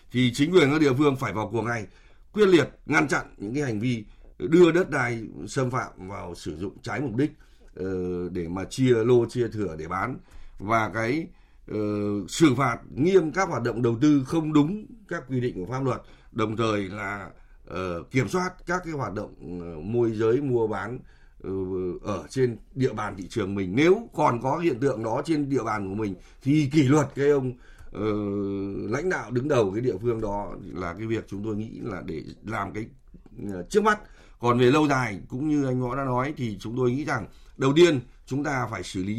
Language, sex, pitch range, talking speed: Vietnamese, male, 105-155 Hz, 210 wpm